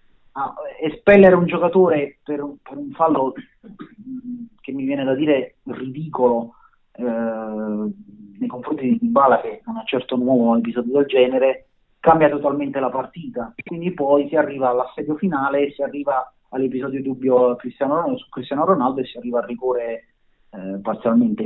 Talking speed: 155 wpm